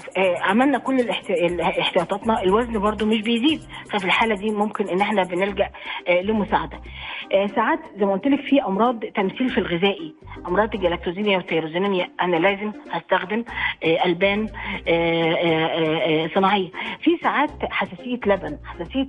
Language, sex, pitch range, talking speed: Arabic, female, 180-230 Hz, 120 wpm